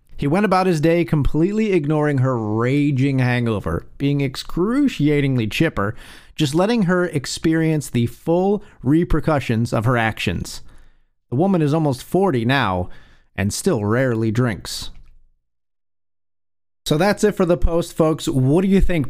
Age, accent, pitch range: 40-59, American, 125-170 Hz